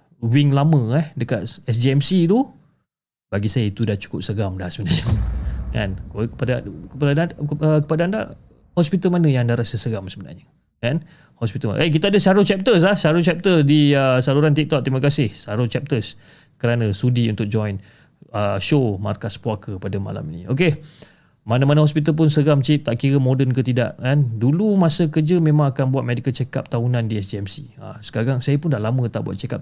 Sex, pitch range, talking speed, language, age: male, 120-155 Hz, 180 wpm, Malay, 30-49